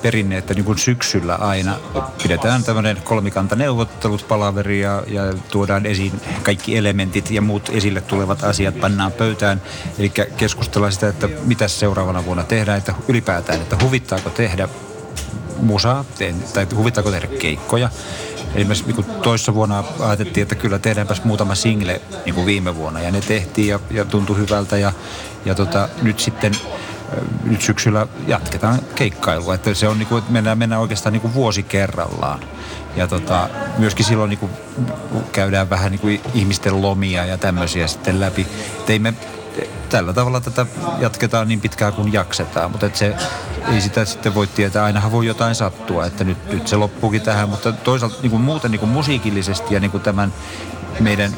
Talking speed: 165 wpm